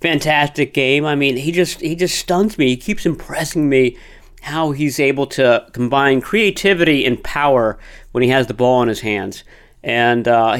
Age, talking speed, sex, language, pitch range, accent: 40-59, 180 wpm, male, English, 115-150 Hz, American